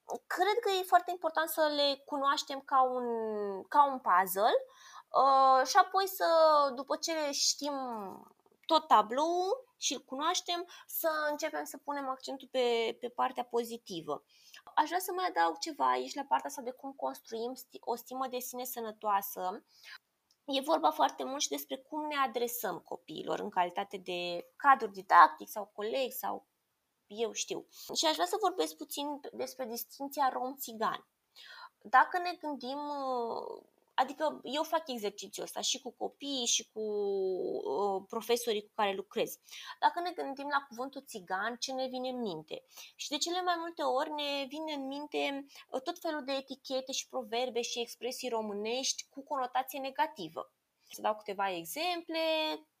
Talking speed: 150 wpm